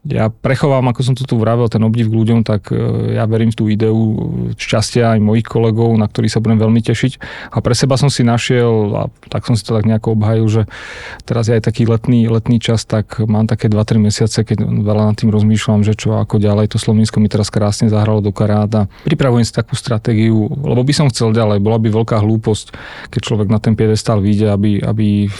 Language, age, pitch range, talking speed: Slovak, 30-49, 110-120 Hz, 220 wpm